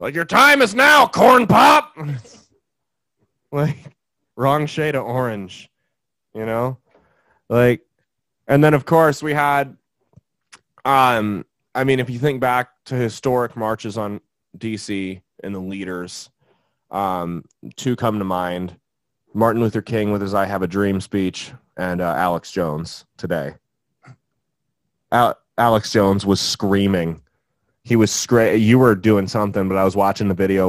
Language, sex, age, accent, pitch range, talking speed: English, male, 20-39, American, 100-140 Hz, 145 wpm